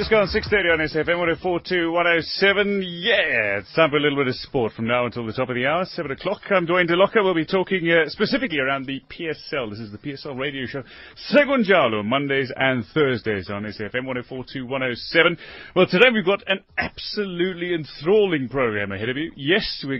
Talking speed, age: 185 wpm, 30-49